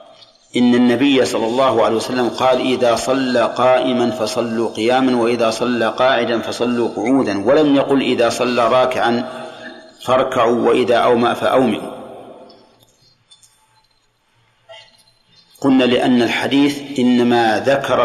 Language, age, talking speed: Arabic, 50-69, 105 wpm